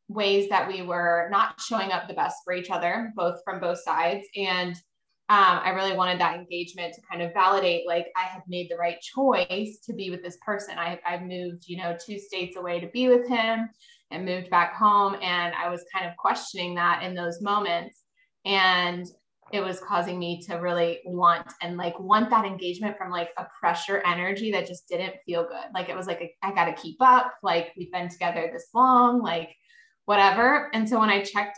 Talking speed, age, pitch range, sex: 210 wpm, 20-39, 175-205 Hz, female